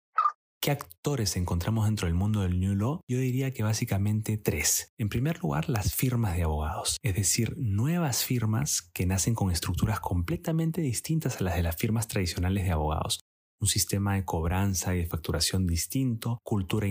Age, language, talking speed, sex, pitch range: 30-49, Spanish, 170 wpm, male, 95-120 Hz